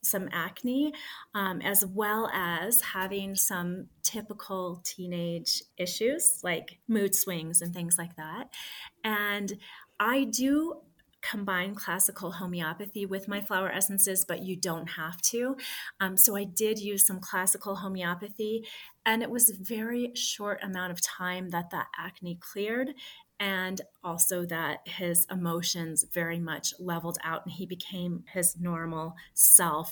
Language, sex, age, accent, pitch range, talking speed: English, female, 30-49, American, 175-205 Hz, 140 wpm